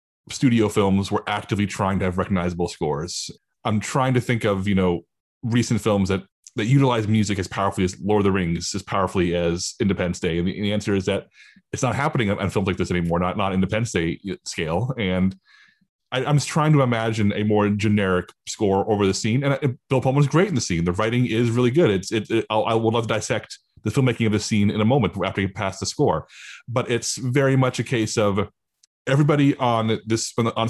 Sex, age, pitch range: male, 30-49, 100-120 Hz